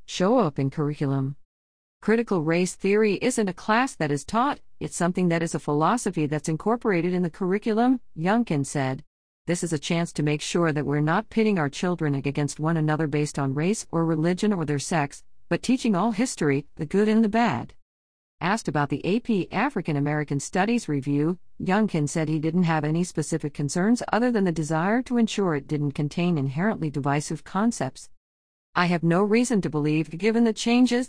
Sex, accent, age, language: female, American, 50-69, English